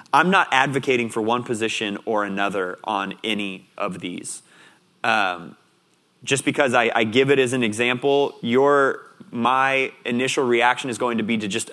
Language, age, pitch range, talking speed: English, 30-49, 120-145 Hz, 165 wpm